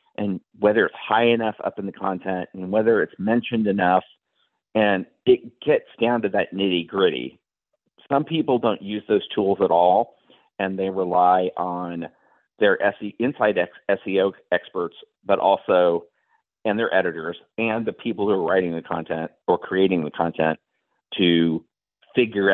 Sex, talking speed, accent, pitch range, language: male, 155 wpm, American, 90-120 Hz, English